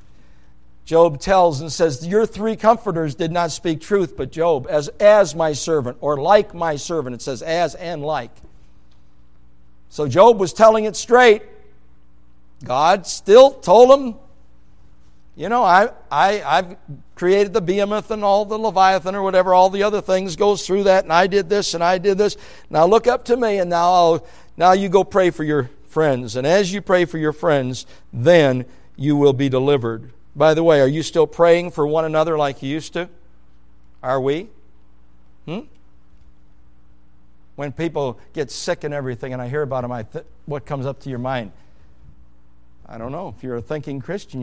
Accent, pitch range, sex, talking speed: American, 105-170 Hz, male, 185 wpm